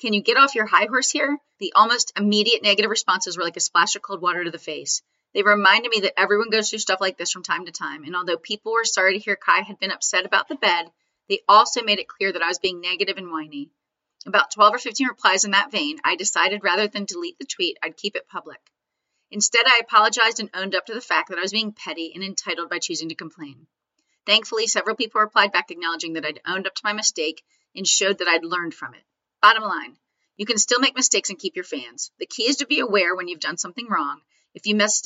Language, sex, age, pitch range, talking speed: English, female, 30-49, 180-225 Hz, 250 wpm